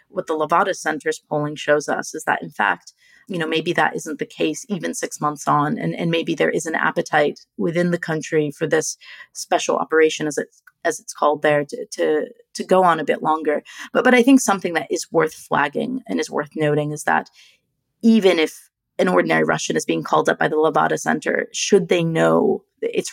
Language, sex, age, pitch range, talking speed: English, female, 30-49, 155-230 Hz, 215 wpm